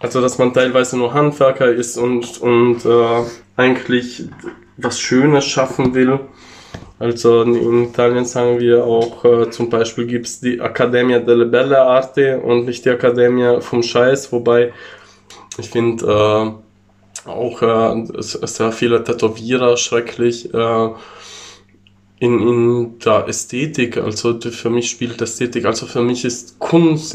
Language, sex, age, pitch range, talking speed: German, male, 20-39, 115-125 Hz, 140 wpm